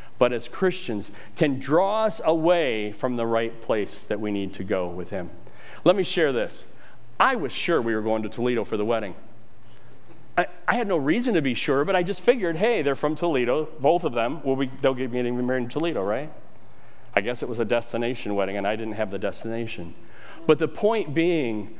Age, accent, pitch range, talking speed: 40-59, American, 110-155 Hz, 210 wpm